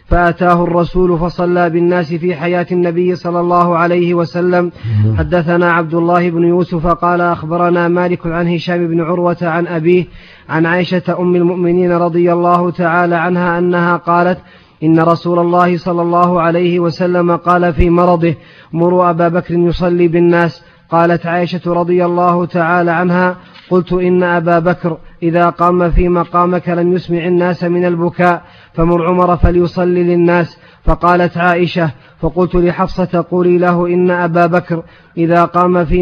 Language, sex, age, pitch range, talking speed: Arabic, male, 30-49, 170-175 Hz, 140 wpm